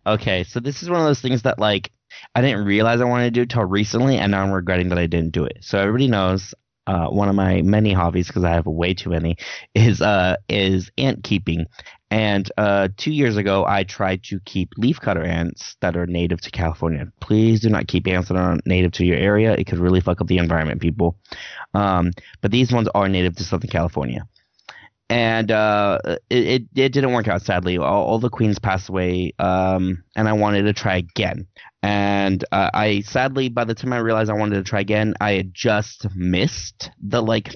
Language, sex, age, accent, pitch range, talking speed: English, male, 20-39, American, 90-115 Hz, 215 wpm